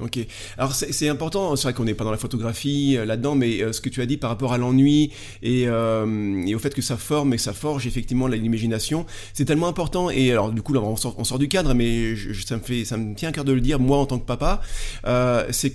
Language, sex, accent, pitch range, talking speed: French, male, French, 115-145 Hz, 280 wpm